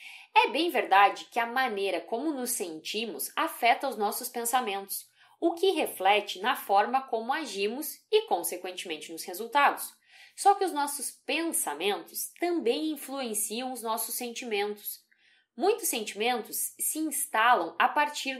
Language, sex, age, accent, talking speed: Portuguese, female, 10-29, Brazilian, 130 wpm